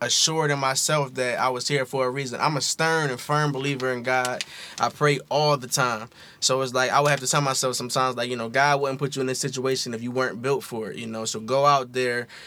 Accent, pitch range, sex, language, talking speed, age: American, 130-160 Hz, male, English, 270 wpm, 20-39